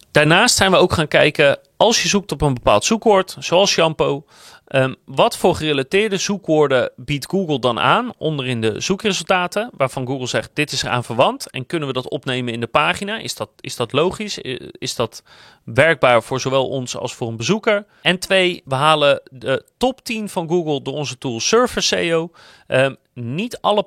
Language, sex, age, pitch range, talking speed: Dutch, male, 40-59, 130-180 Hz, 185 wpm